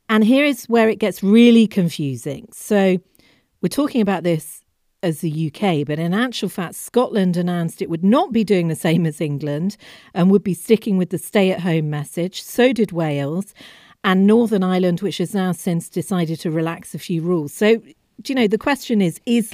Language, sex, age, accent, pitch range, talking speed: English, female, 40-59, British, 165-210 Hz, 195 wpm